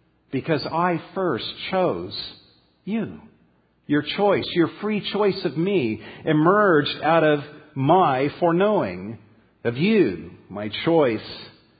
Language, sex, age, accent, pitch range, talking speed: English, male, 50-69, American, 115-160 Hz, 105 wpm